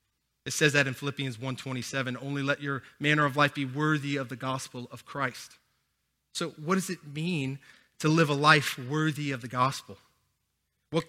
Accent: American